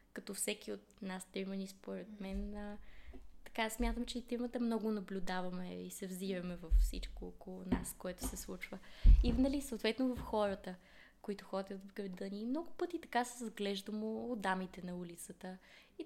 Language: Bulgarian